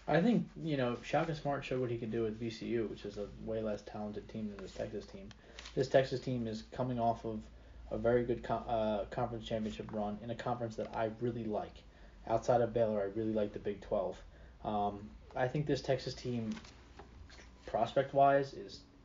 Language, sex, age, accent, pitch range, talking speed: English, male, 20-39, American, 105-135 Hz, 200 wpm